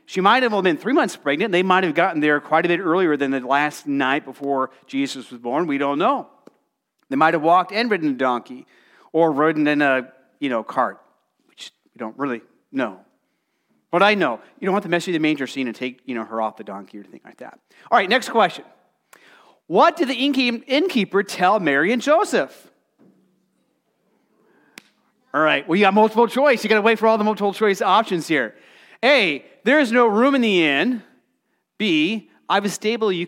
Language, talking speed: English, 200 wpm